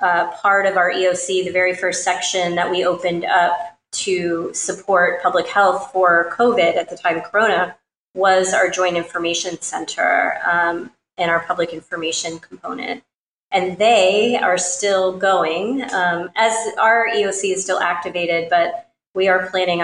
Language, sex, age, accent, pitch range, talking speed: English, female, 30-49, American, 175-195 Hz, 155 wpm